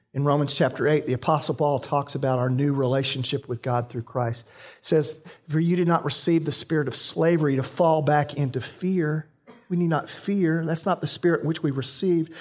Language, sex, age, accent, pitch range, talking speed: English, male, 40-59, American, 130-160 Hz, 210 wpm